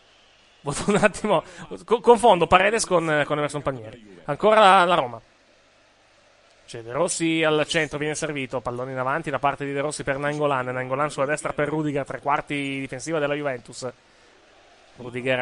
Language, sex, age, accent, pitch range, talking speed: Italian, male, 20-39, native, 130-160 Hz, 165 wpm